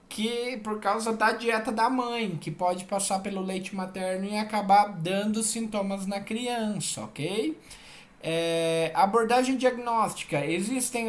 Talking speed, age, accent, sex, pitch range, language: 125 wpm, 20-39, Brazilian, male, 170-235 Hz, Portuguese